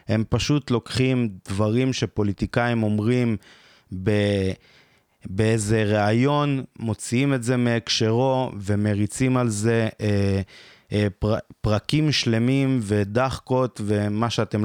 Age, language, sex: 20-39, Hebrew, male